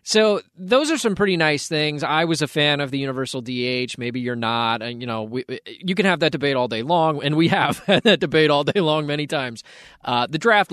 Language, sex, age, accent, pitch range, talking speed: English, male, 20-39, American, 130-170 Hz, 245 wpm